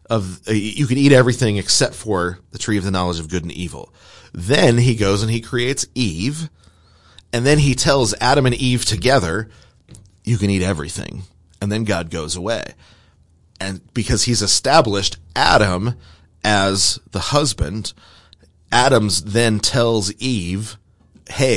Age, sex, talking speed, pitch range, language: 30-49, male, 150 wpm, 90-120 Hz, English